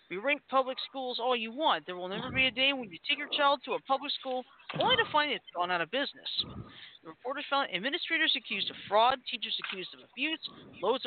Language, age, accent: English, 50-69, American